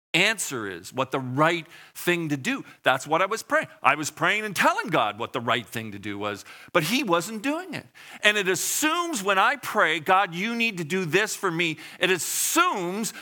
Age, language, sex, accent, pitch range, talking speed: 50-69, English, male, American, 130-215 Hz, 215 wpm